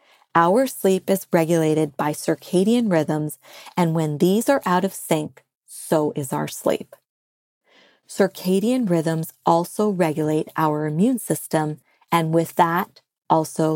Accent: American